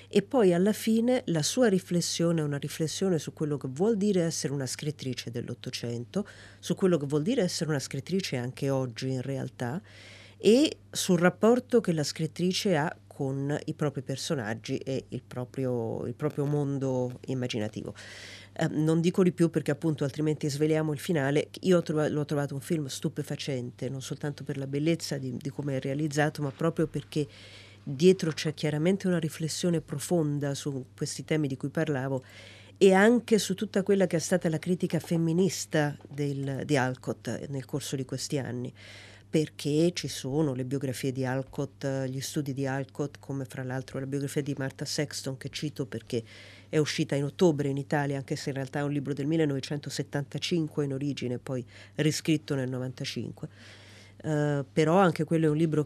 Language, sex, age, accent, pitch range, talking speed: Italian, female, 40-59, native, 130-160 Hz, 170 wpm